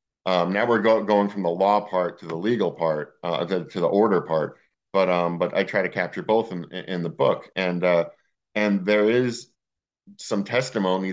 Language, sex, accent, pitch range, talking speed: English, male, American, 85-105 Hz, 195 wpm